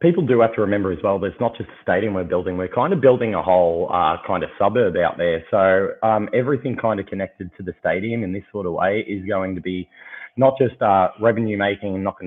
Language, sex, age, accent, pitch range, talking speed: English, male, 20-39, Australian, 95-115 Hz, 255 wpm